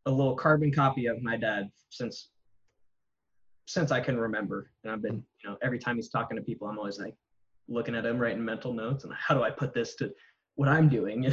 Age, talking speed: 10-29, 220 wpm